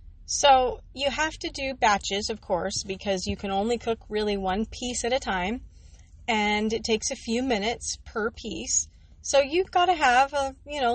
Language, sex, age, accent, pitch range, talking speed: English, female, 30-49, American, 190-240 Hz, 190 wpm